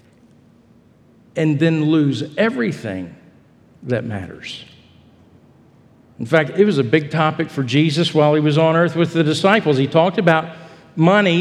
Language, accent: English, American